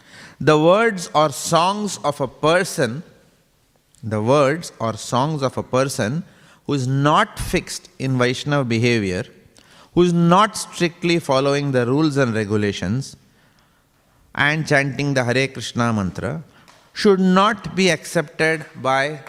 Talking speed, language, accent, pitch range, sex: 130 wpm, English, Indian, 120-155 Hz, male